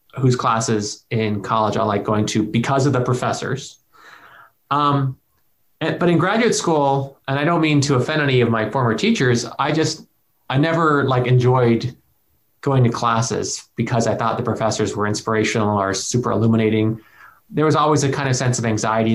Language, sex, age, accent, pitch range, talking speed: English, male, 20-39, American, 115-145 Hz, 175 wpm